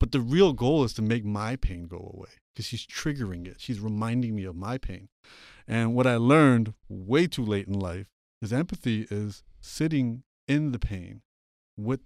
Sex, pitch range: male, 100-135 Hz